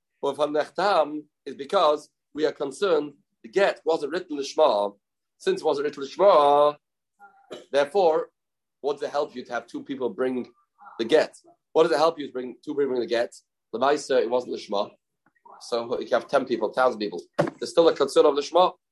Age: 30-49